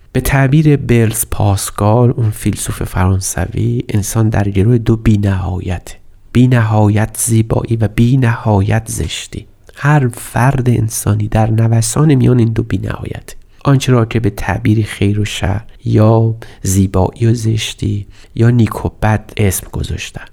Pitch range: 100-120 Hz